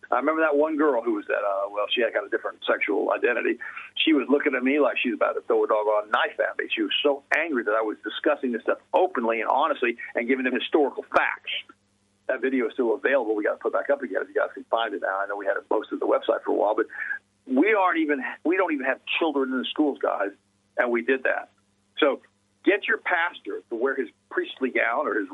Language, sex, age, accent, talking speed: English, male, 50-69, American, 265 wpm